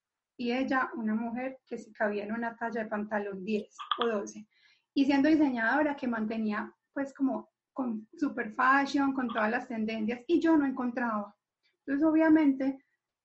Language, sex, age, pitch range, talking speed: Spanish, female, 30-49, 225-275 Hz, 160 wpm